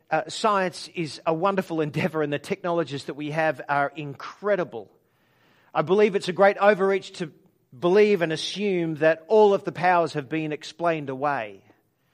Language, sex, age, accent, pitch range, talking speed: English, male, 50-69, Australian, 155-185 Hz, 165 wpm